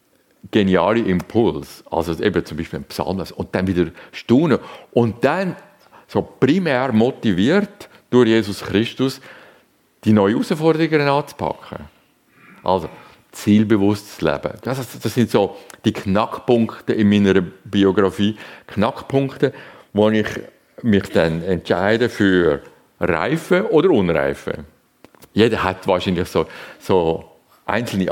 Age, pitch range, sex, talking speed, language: 50-69, 95-125 Hz, male, 110 wpm, German